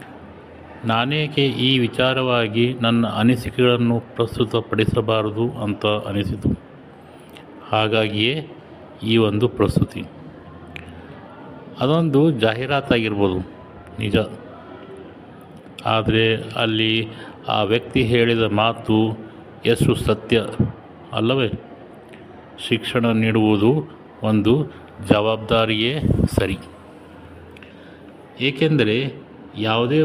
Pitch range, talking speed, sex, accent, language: 110-125 Hz, 60 wpm, male, Indian, English